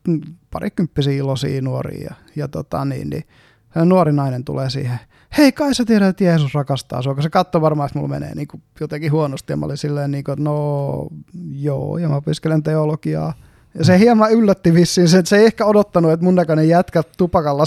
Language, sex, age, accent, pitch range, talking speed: Finnish, male, 20-39, native, 140-170 Hz, 195 wpm